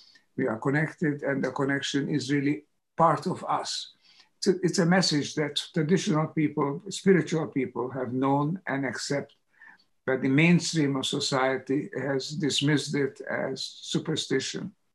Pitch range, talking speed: 135-155 Hz, 135 wpm